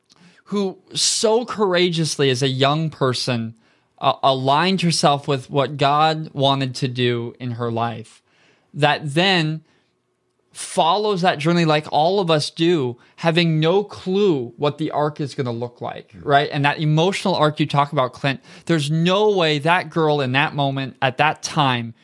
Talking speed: 165 wpm